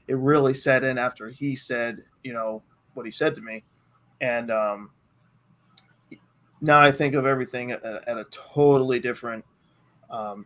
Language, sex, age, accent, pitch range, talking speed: English, male, 20-39, American, 125-145 Hz, 155 wpm